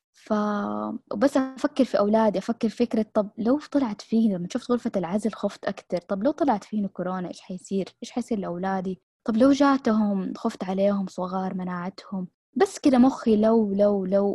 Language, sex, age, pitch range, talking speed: Arabic, female, 20-39, 190-220 Hz, 170 wpm